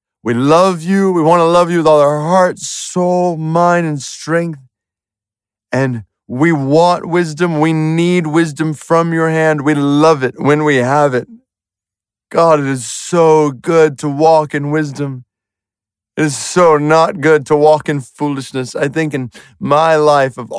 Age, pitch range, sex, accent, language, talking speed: 30-49, 125-155 Hz, male, American, English, 165 wpm